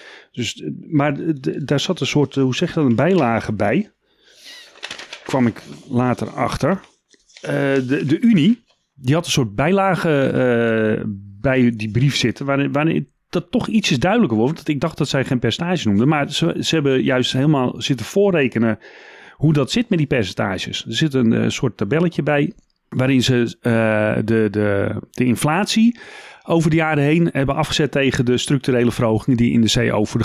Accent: Dutch